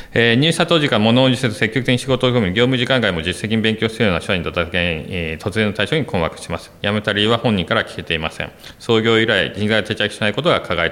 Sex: male